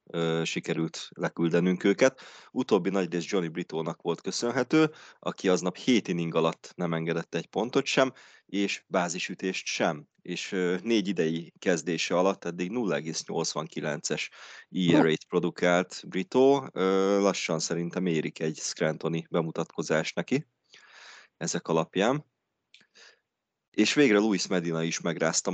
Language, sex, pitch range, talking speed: Hungarian, male, 85-110 Hz, 110 wpm